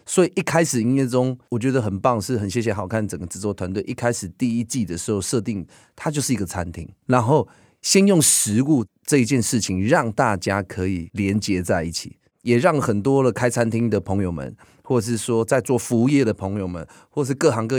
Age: 30-49